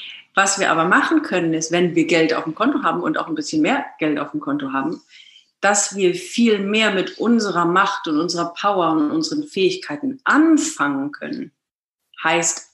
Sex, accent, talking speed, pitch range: female, German, 185 wpm, 170-255 Hz